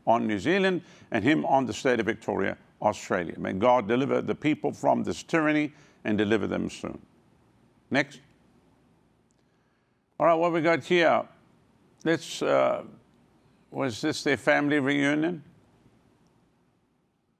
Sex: male